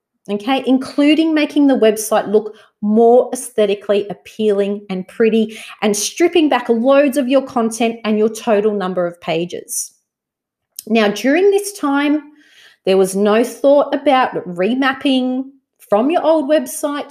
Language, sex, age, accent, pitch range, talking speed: English, female, 30-49, Australian, 210-275 Hz, 135 wpm